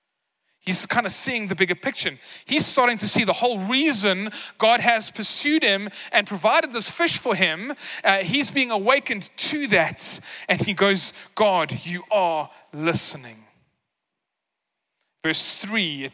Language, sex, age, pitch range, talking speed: English, male, 30-49, 160-215 Hz, 140 wpm